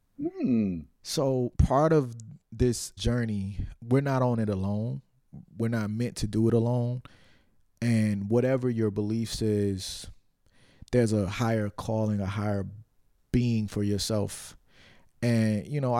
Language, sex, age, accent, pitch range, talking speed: English, male, 20-39, American, 105-120 Hz, 130 wpm